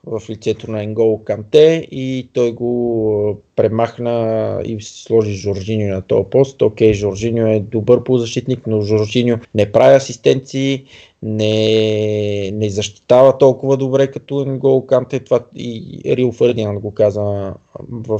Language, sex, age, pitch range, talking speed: Bulgarian, male, 20-39, 105-135 Hz, 130 wpm